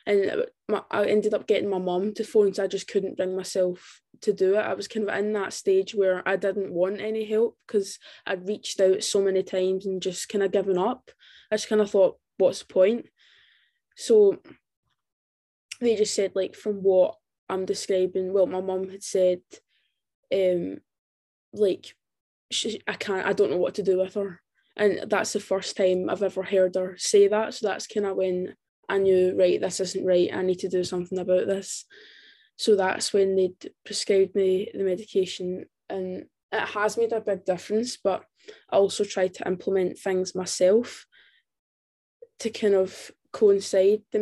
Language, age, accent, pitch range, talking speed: English, 10-29, British, 185-210 Hz, 185 wpm